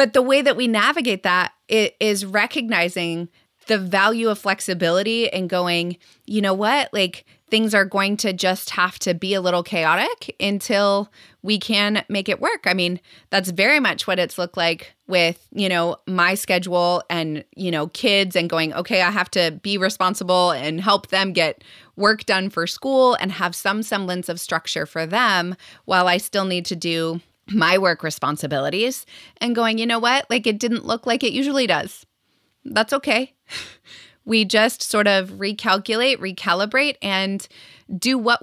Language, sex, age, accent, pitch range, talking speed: English, female, 20-39, American, 175-215 Hz, 175 wpm